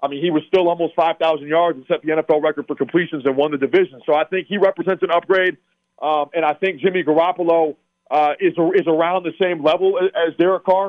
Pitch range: 155-190 Hz